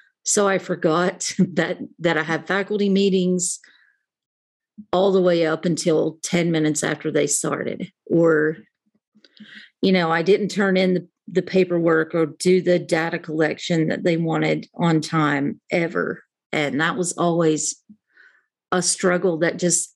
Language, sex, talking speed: English, female, 145 wpm